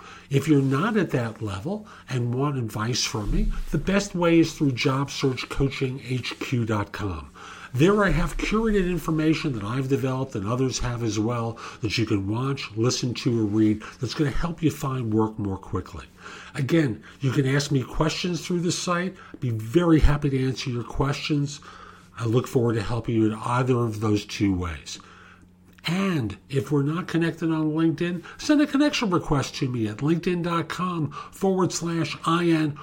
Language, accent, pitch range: English, American, 115-165 Hz